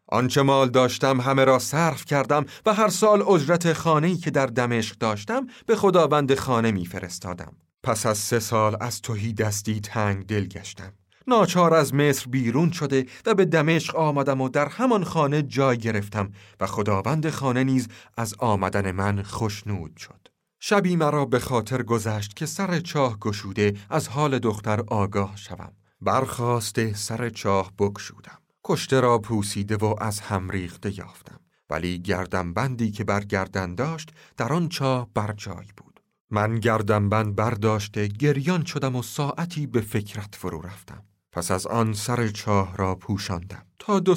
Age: 40-59